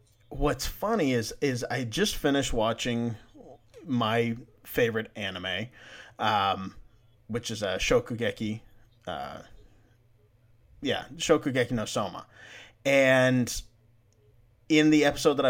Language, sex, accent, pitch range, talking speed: English, male, American, 110-135 Hz, 105 wpm